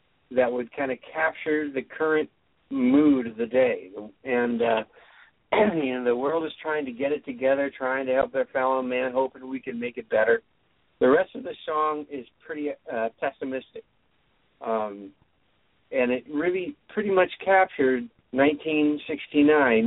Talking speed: 155 wpm